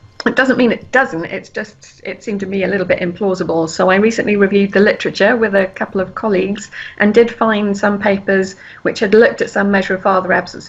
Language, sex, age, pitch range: English, female, 40-59, 180-225 Hz